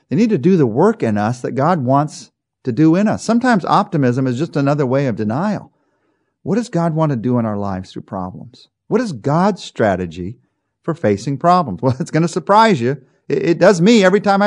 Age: 50-69